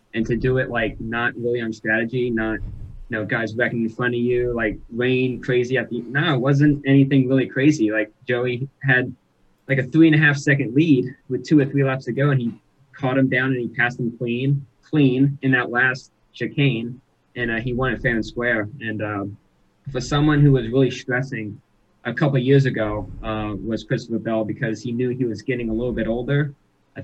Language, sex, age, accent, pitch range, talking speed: English, male, 20-39, American, 110-135 Hz, 205 wpm